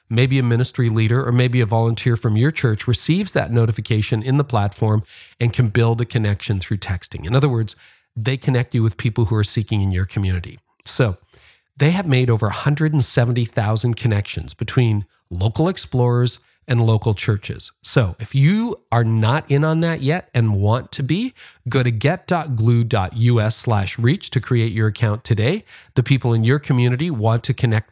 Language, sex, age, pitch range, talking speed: English, male, 40-59, 110-135 Hz, 175 wpm